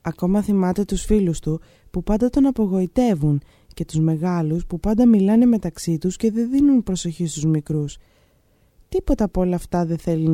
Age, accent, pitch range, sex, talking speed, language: 20-39, native, 160-225 Hz, female, 170 wpm, Greek